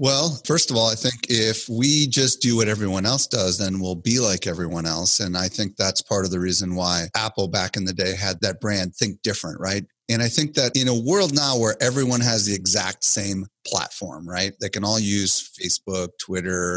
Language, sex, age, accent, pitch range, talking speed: English, male, 30-49, American, 95-125 Hz, 220 wpm